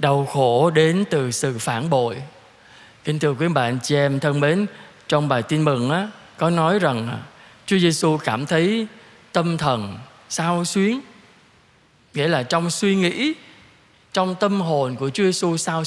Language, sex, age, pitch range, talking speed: Vietnamese, male, 20-39, 135-185 Hz, 165 wpm